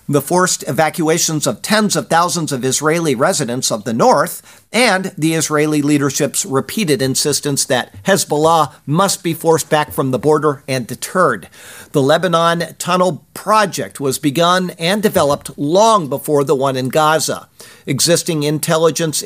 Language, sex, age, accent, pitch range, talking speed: English, male, 50-69, American, 145-175 Hz, 145 wpm